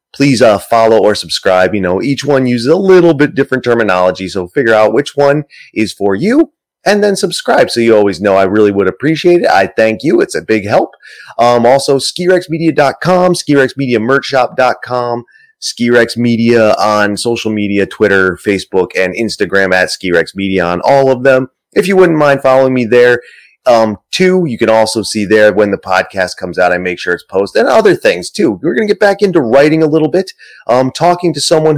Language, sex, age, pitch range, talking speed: English, male, 30-49, 110-170 Hz, 195 wpm